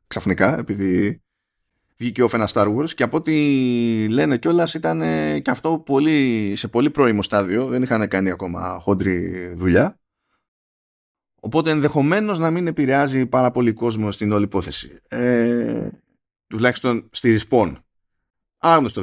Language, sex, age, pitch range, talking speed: Greek, male, 20-39, 100-140 Hz, 125 wpm